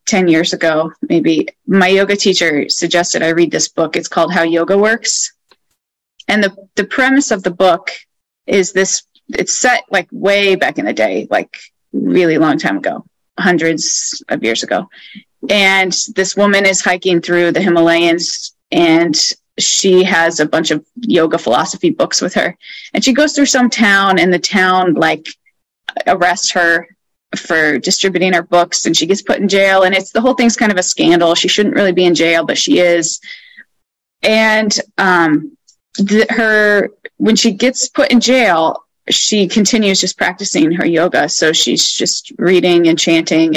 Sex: female